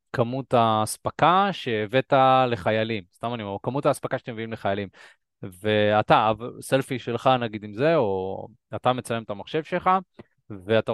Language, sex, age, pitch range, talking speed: Hebrew, male, 20-39, 110-155 Hz, 135 wpm